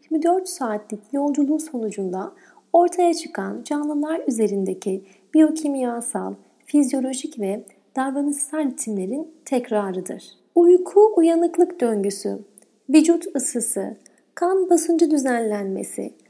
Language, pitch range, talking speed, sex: Turkish, 215-310 Hz, 80 wpm, female